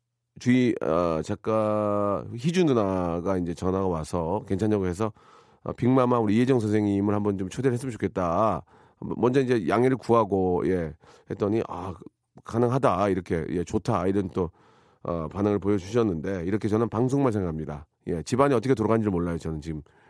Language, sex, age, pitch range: Korean, male, 40-59, 95-135 Hz